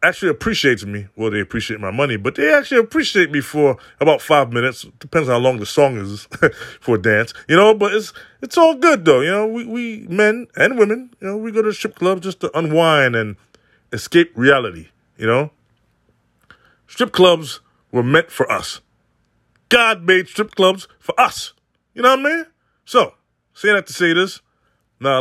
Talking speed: 195 wpm